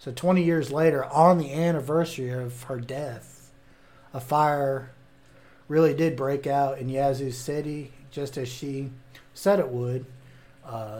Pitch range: 125-145 Hz